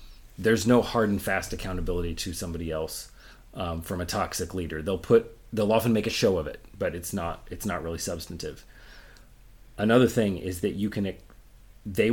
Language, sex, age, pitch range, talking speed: English, male, 30-49, 90-110 Hz, 185 wpm